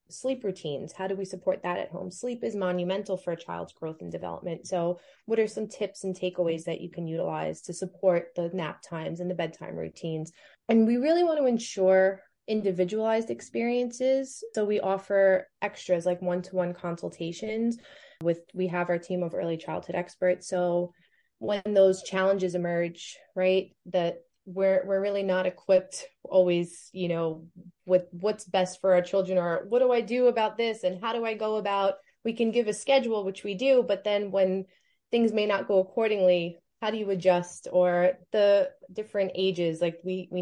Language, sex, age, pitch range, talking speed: English, female, 20-39, 175-210 Hz, 185 wpm